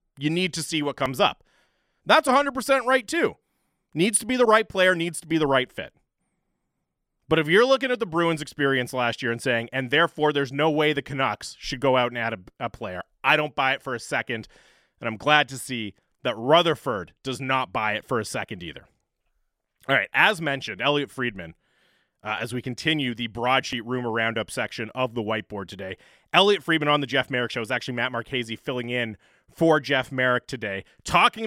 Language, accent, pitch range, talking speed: English, American, 125-160 Hz, 210 wpm